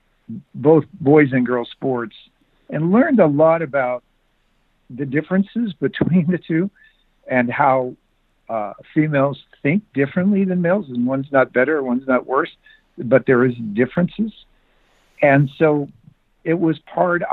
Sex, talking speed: male, 135 wpm